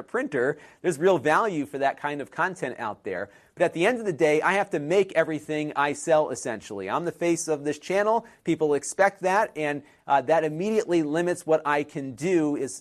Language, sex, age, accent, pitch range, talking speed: English, male, 40-59, American, 135-165 Hz, 225 wpm